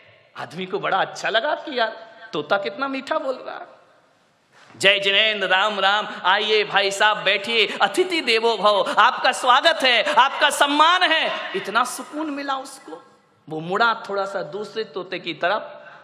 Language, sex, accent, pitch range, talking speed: Hindi, male, native, 220-305 Hz, 100 wpm